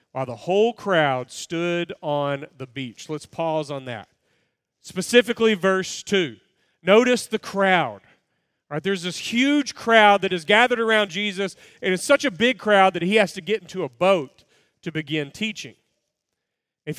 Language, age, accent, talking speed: English, 40-59, American, 160 wpm